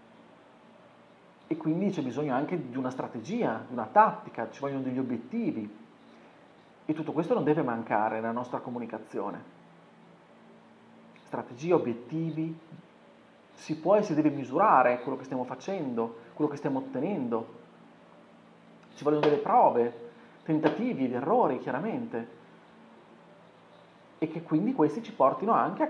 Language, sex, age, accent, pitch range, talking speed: Italian, male, 40-59, native, 130-165 Hz, 130 wpm